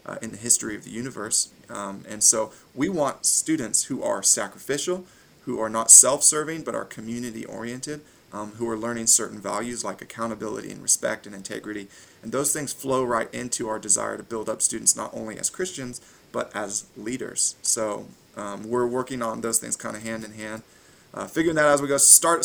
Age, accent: 30-49, American